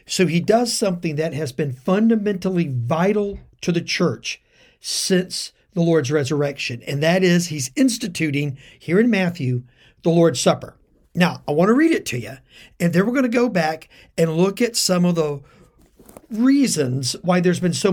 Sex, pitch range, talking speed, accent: male, 155-225 Hz, 175 wpm, American